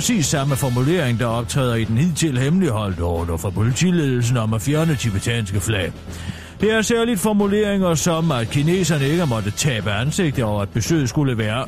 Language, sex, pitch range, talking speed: Danish, male, 105-155 Hz, 185 wpm